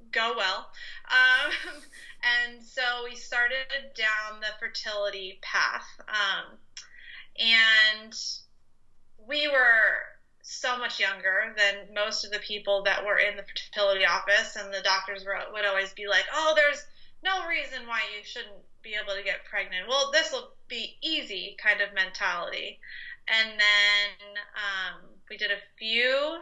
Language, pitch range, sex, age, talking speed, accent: English, 200-235 Hz, female, 20-39, 145 wpm, American